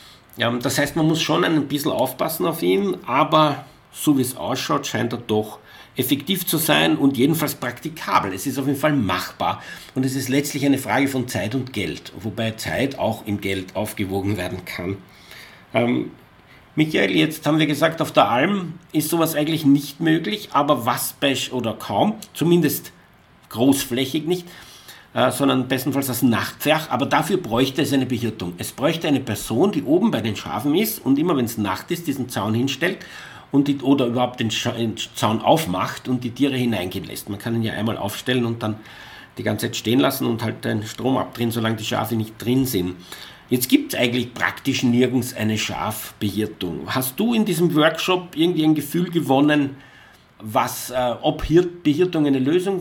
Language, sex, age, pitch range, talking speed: German, male, 50-69, 115-155 Hz, 185 wpm